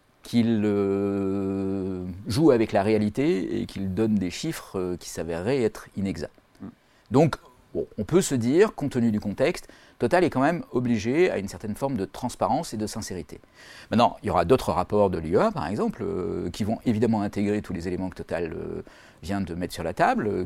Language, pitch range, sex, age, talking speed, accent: French, 90-115 Hz, male, 40-59, 200 wpm, French